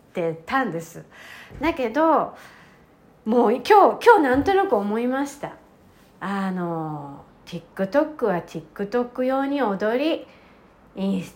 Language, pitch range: Japanese, 195-295 Hz